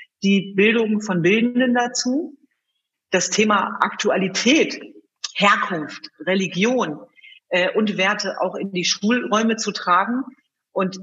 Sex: female